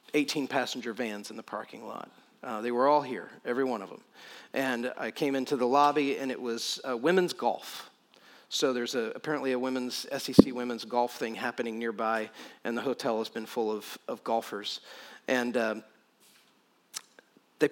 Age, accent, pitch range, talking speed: 40-59, American, 120-150 Hz, 175 wpm